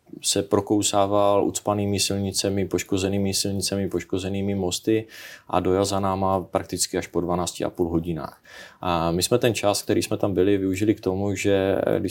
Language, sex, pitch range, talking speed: Czech, male, 85-100 Hz, 165 wpm